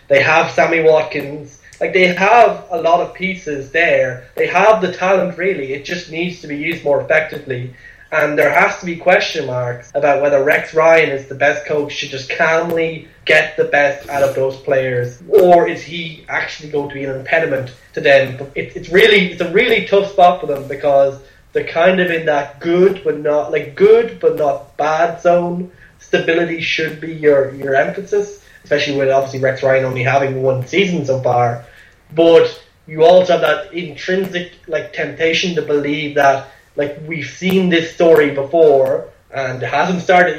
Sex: male